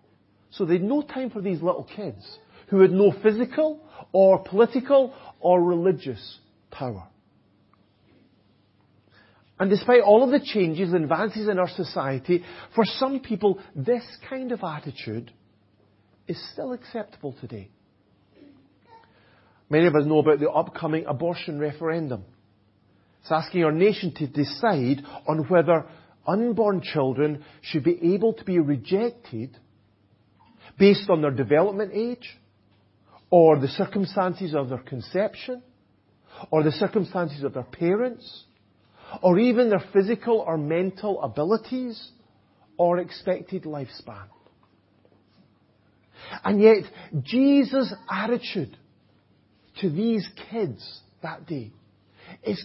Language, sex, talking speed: English, male, 115 wpm